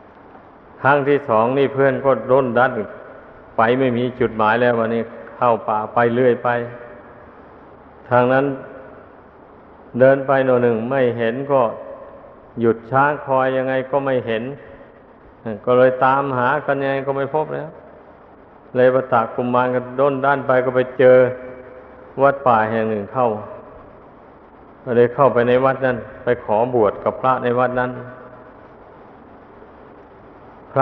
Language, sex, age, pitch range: Thai, male, 60-79, 125-140 Hz